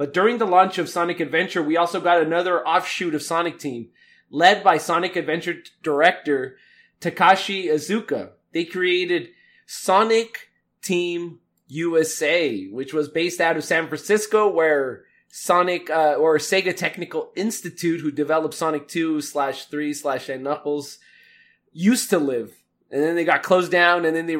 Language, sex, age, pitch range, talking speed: English, male, 20-39, 150-190 Hz, 150 wpm